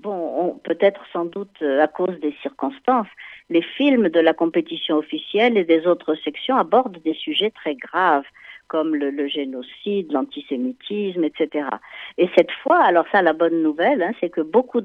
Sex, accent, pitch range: female, French, 170-220 Hz